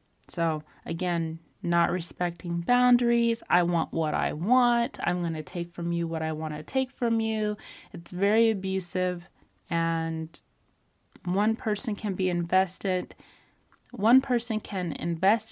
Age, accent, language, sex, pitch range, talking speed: 30-49, American, English, female, 170-220 Hz, 140 wpm